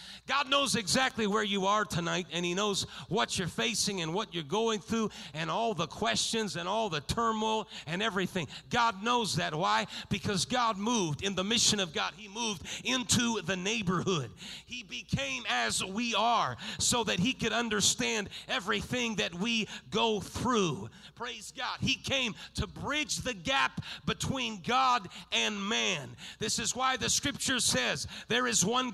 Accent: American